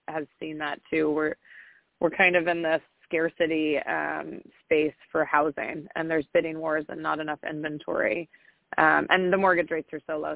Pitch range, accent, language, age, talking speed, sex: 155-175 Hz, American, English, 20-39, 180 wpm, female